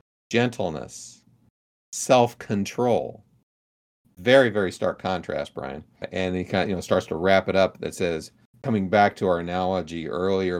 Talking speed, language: 145 wpm, English